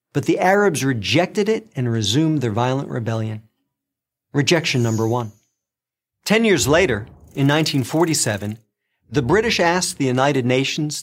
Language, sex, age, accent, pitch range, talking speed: English, male, 50-69, American, 120-160 Hz, 130 wpm